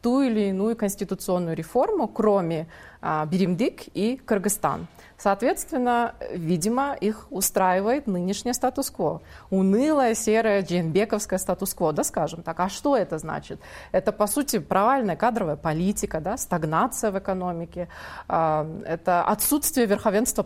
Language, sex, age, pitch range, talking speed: Russian, female, 20-39, 175-225 Hz, 120 wpm